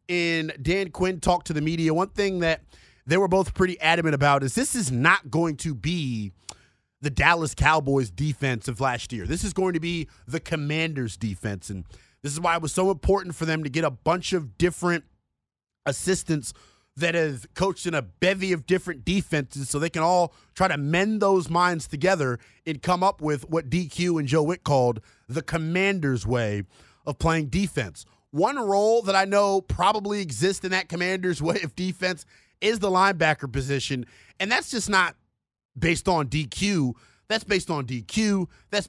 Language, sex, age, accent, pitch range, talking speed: English, male, 30-49, American, 145-190 Hz, 185 wpm